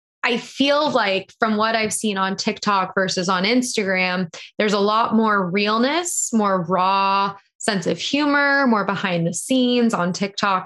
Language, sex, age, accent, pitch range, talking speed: English, female, 20-39, American, 185-230 Hz, 160 wpm